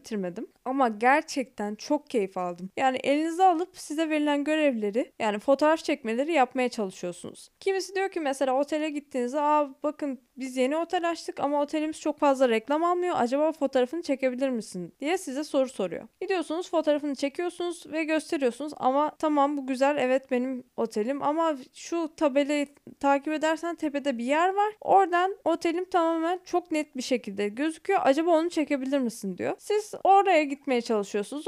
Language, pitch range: Turkish, 255-335 Hz